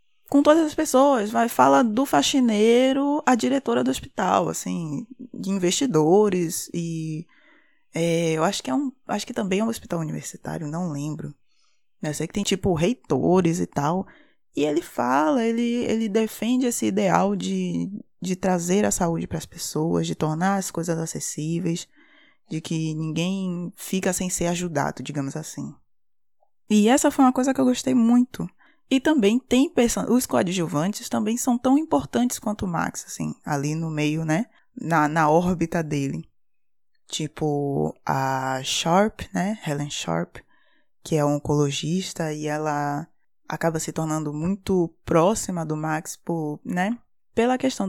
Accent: Brazilian